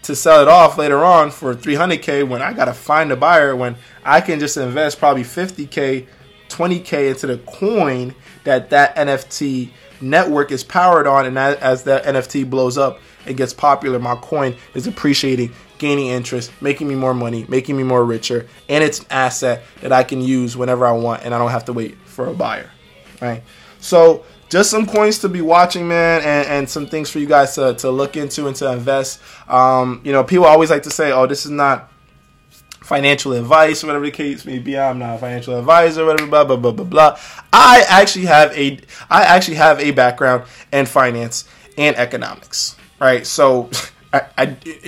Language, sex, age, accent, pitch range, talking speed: English, male, 20-39, American, 125-155 Hz, 195 wpm